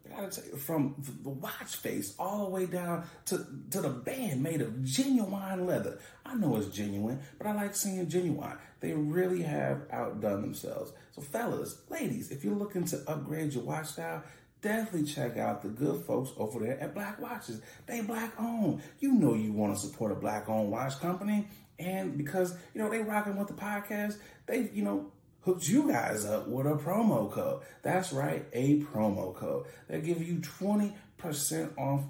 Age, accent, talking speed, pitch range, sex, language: 30-49, American, 185 wpm, 135-195 Hz, male, English